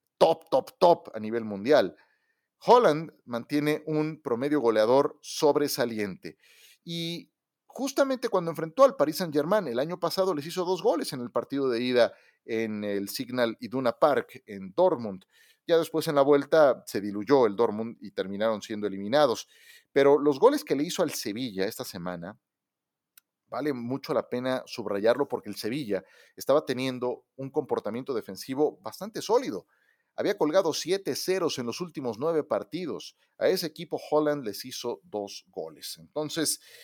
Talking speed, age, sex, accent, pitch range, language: 155 wpm, 40-59, male, Mexican, 110-155 Hz, Spanish